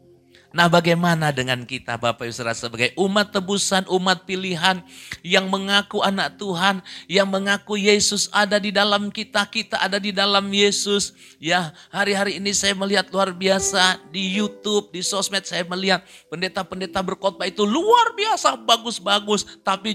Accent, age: native, 40-59